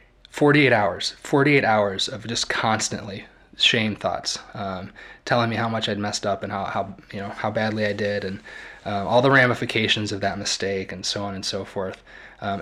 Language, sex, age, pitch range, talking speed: English, male, 20-39, 105-125 Hz, 195 wpm